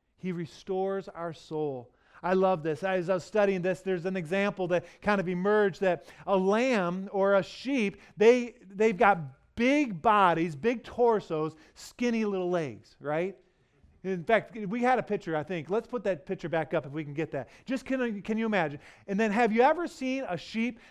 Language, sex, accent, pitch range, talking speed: English, male, American, 175-230 Hz, 195 wpm